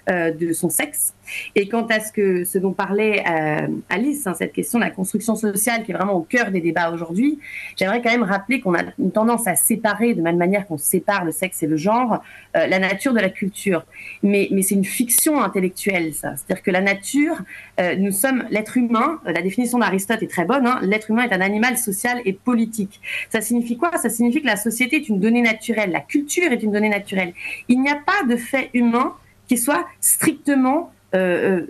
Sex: female